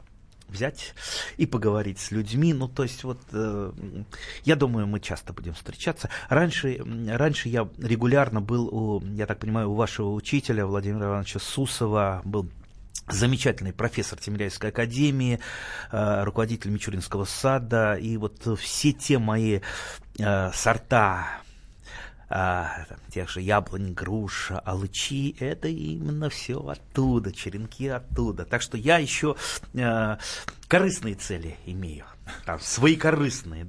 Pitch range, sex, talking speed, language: 95-120 Hz, male, 125 wpm, Russian